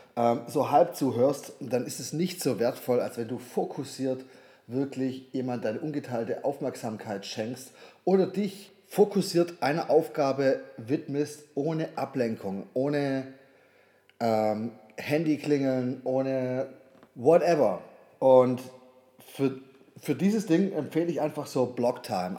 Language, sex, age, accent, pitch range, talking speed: German, male, 30-49, German, 120-145 Hz, 115 wpm